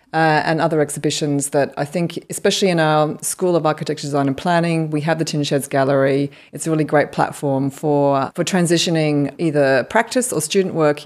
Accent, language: Australian, English